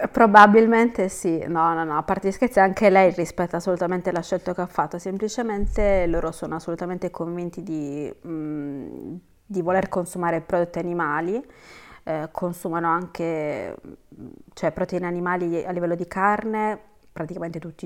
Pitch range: 170-205 Hz